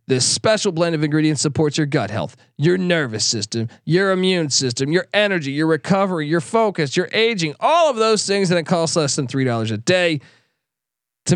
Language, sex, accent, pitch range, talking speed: English, male, American, 145-195 Hz, 190 wpm